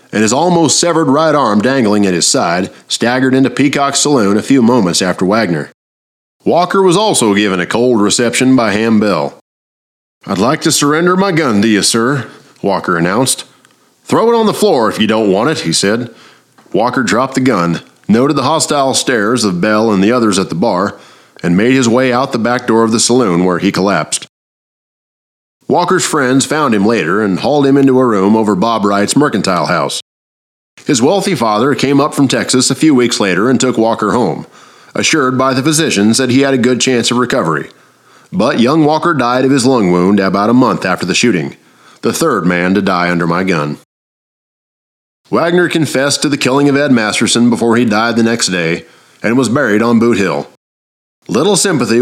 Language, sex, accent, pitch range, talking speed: English, male, American, 105-135 Hz, 195 wpm